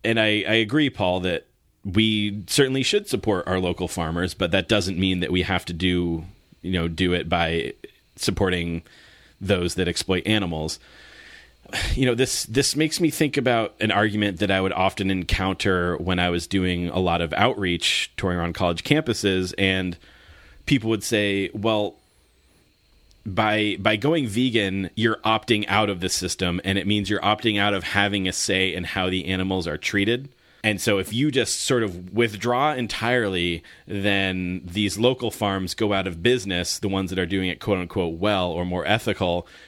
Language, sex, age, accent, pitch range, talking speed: English, male, 30-49, American, 90-110 Hz, 180 wpm